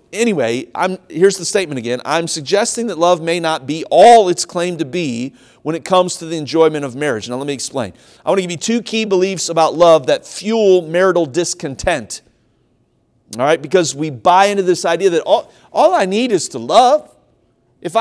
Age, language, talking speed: 40-59, English, 205 wpm